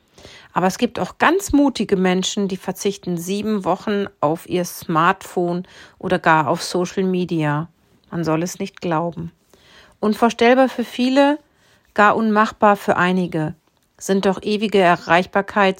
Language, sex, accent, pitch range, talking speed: German, female, German, 175-215 Hz, 135 wpm